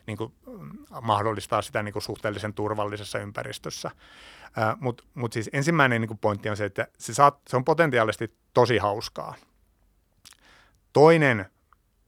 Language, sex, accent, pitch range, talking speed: Finnish, male, native, 105-125 Hz, 130 wpm